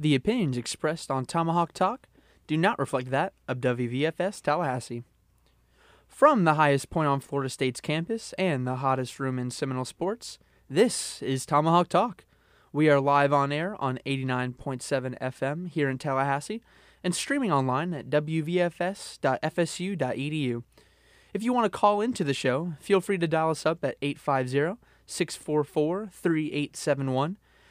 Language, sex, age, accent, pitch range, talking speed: English, male, 20-39, American, 140-180 Hz, 140 wpm